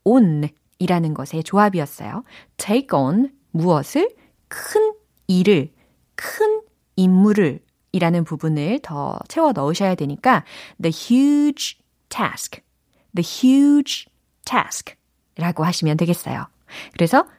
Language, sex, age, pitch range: Korean, female, 30-49, 165-255 Hz